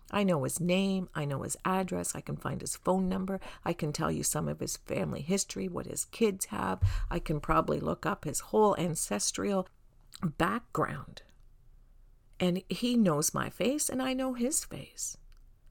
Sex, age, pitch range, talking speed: female, 50-69, 150-210 Hz, 175 wpm